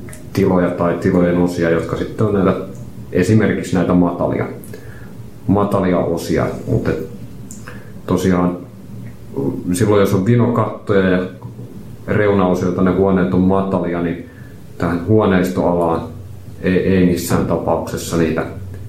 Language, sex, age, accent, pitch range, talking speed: Finnish, male, 30-49, native, 85-100 Hz, 105 wpm